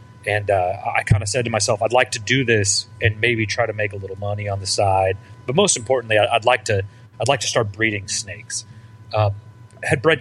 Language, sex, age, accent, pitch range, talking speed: English, male, 30-49, American, 105-125 Hz, 230 wpm